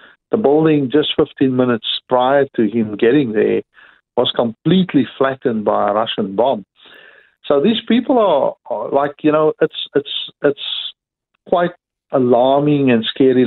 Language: English